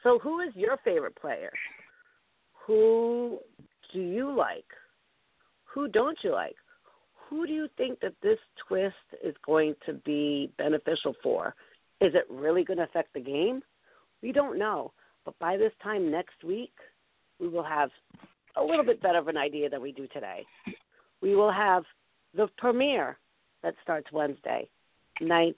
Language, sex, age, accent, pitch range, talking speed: English, female, 50-69, American, 150-245 Hz, 155 wpm